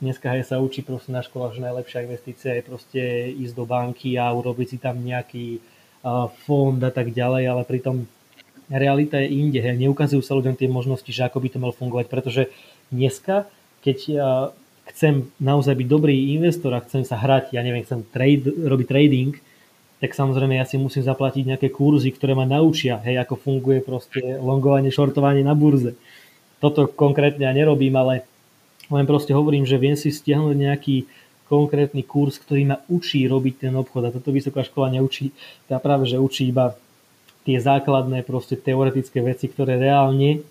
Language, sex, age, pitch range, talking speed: Slovak, male, 20-39, 125-140 Hz, 170 wpm